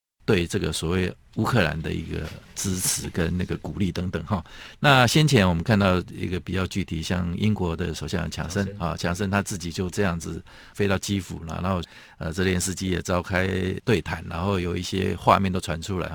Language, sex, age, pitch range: Chinese, male, 50-69, 85-100 Hz